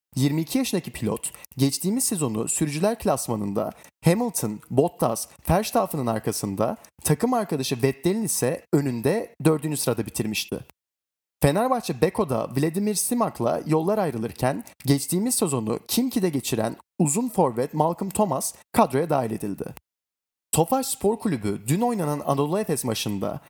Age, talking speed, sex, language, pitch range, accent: 30-49, 115 wpm, male, Turkish, 115-180 Hz, native